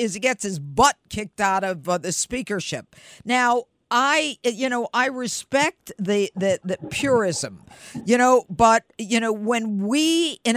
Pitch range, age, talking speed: 185-250 Hz, 50-69, 160 wpm